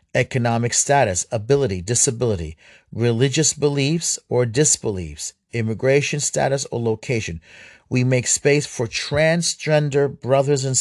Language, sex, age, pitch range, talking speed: English, male, 40-59, 115-140 Hz, 105 wpm